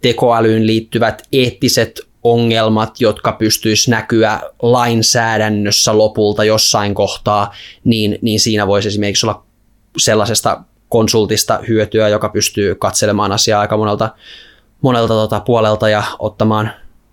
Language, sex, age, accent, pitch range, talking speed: Finnish, male, 20-39, native, 110-120 Hz, 105 wpm